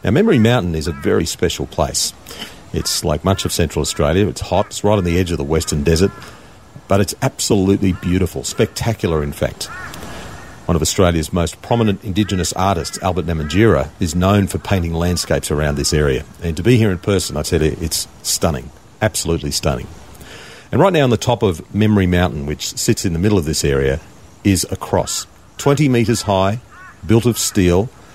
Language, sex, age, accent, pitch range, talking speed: English, male, 40-59, Australian, 80-105 Hz, 190 wpm